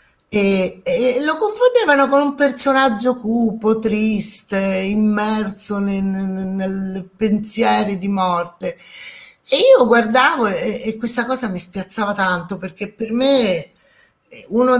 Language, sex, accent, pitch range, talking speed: Italian, female, native, 190-240 Hz, 120 wpm